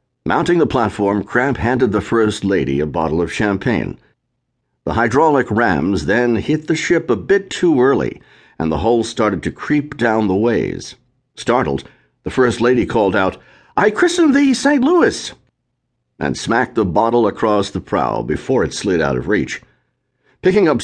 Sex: male